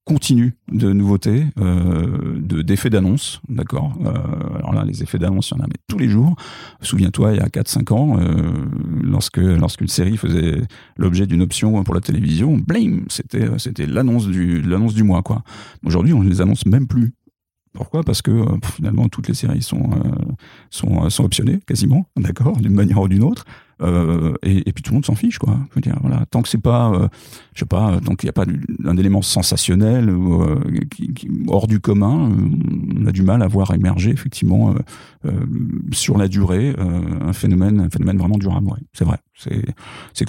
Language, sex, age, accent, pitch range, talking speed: French, male, 40-59, French, 90-120 Hz, 205 wpm